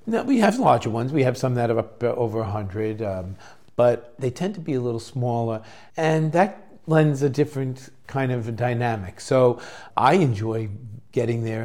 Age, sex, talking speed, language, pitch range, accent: 50-69, male, 190 wpm, English, 105-130 Hz, American